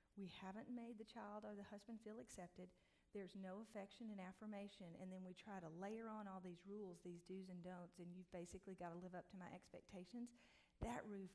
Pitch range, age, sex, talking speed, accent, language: 180-220 Hz, 40-59, female, 215 wpm, American, English